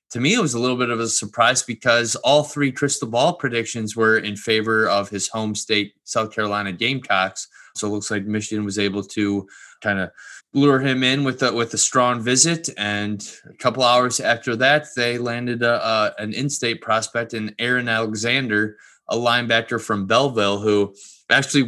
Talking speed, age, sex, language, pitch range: 175 wpm, 20-39, male, English, 105-120 Hz